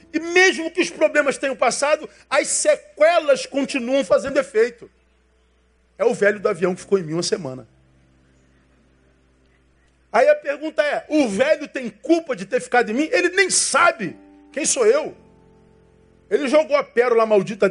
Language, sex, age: Portuguese, male, 40-59